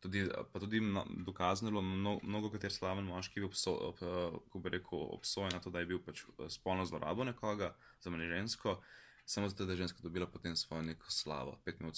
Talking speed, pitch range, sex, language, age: 175 wpm, 90-110 Hz, male, English, 20-39